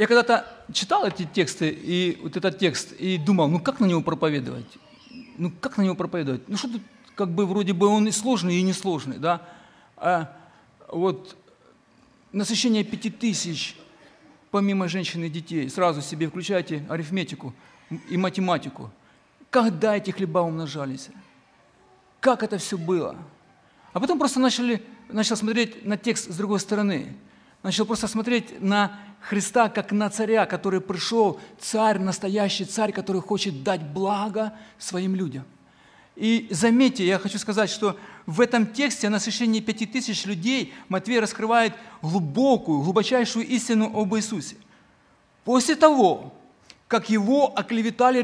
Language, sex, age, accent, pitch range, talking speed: Ukrainian, male, 50-69, native, 185-225 Hz, 140 wpm